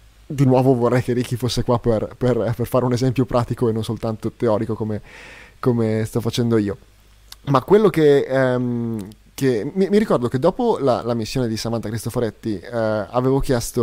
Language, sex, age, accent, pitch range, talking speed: Italian, male, 20-39, native, 110-135 Hz, 180 wpm